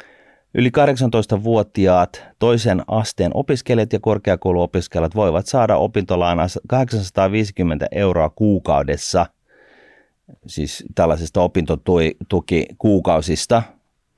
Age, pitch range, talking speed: 30-49, 85-105 Hz, 70 wpm